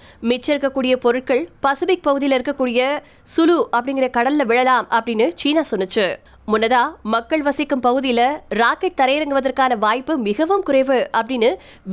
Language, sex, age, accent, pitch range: Tamil, female, 20-39, native, 240-310 Hz